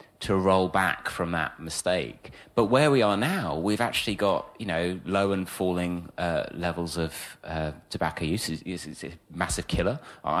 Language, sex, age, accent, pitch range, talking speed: English, male, 30-49, British, 85-115 Hz, 165 wpm